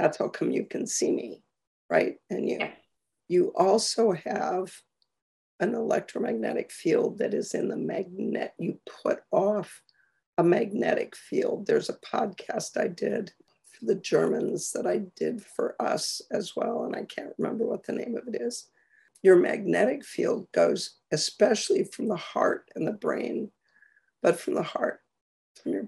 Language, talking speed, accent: English, 160 wpm, American